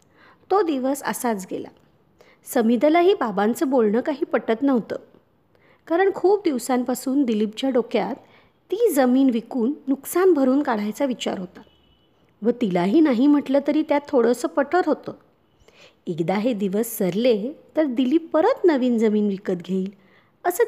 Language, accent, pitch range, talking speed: Marathi, native, 220-300 Hz, 130 wpm